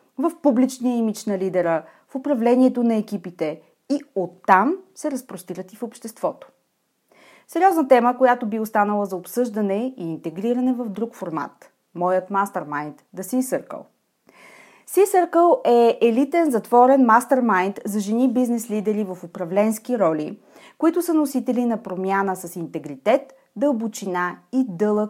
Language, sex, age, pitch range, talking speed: Bulgarian, female, 30-49, 195-275 Hz, 130 wpm